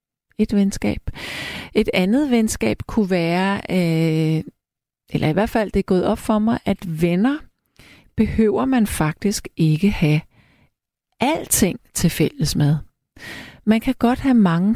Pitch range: 160-215 Hz